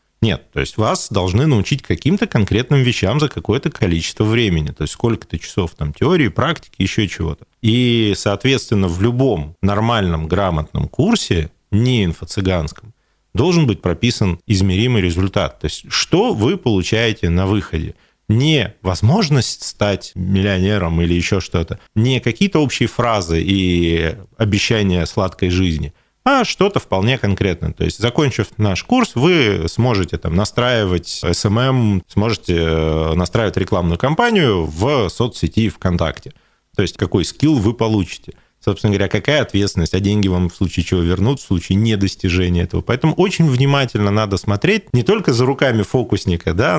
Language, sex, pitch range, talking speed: Russian, male, 90-120 Hz, 140 wpm